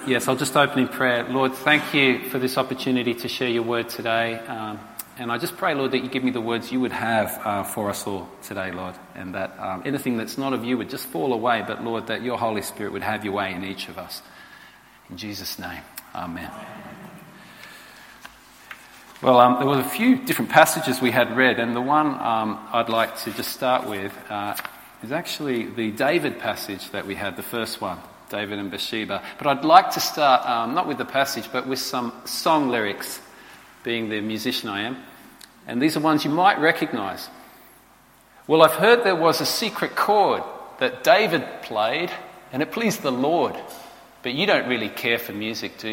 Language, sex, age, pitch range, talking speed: English, male, 40-59, 110-135 Hz, 205 wpm